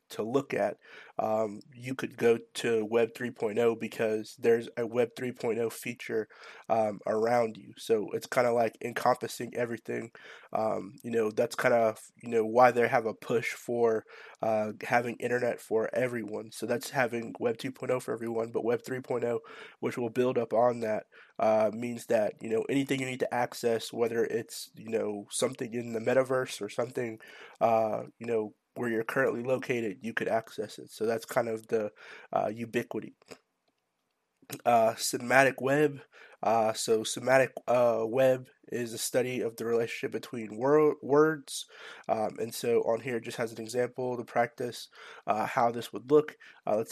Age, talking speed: 20-39, 170 wpm